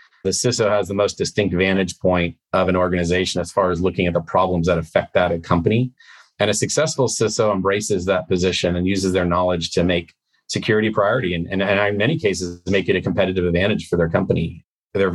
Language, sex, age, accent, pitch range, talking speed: English, male, 40-59, American, 90-100 Hz, 210 wpm